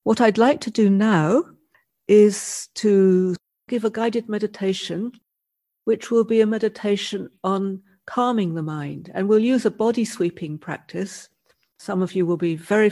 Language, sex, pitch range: English, female, 175-205 Hz